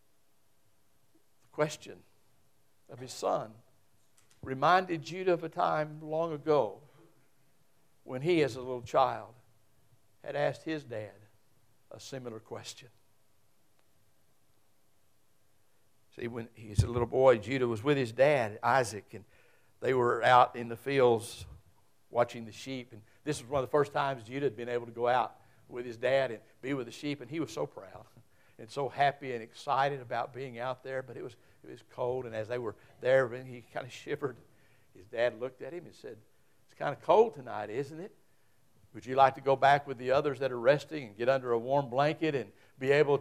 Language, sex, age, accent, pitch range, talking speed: English, male, 60-79, American, 115-140 Hz, 185 wpm